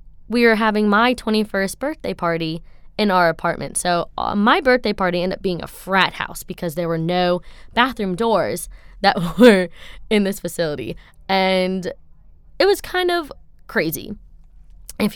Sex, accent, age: female, American, 20-39